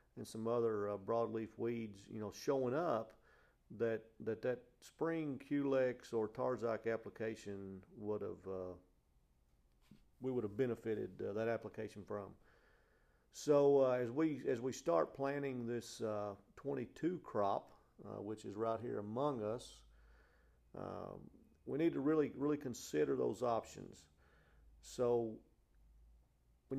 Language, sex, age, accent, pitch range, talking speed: English, male, 50-69, American, 105-130 Hz, 130 wpm